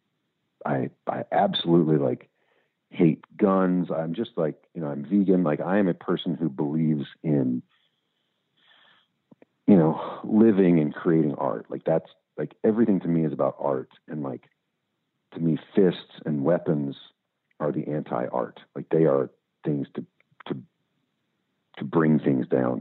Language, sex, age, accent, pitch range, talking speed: English, male, 50-69, American, 70-85 Hz, 150 wpm